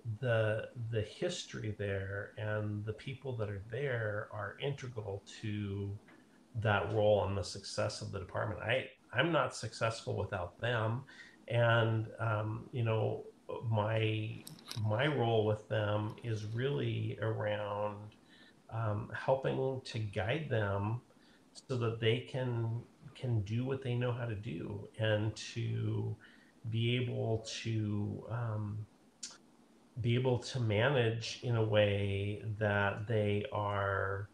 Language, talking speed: English, 125 wpm